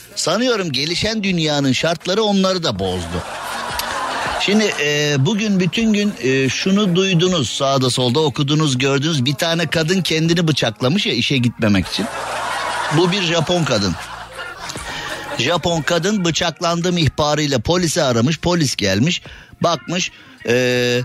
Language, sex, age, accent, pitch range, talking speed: Turkish, male, 50-69, native, 125-170 Hz, 120 wpm